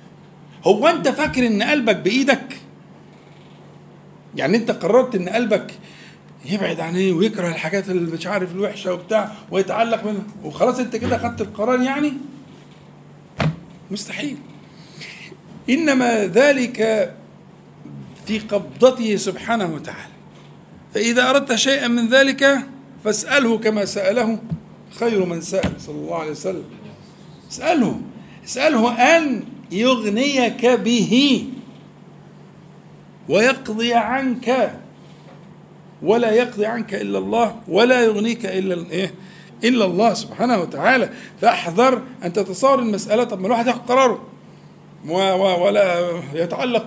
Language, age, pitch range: Arabic, 50-69, 190-245 Hz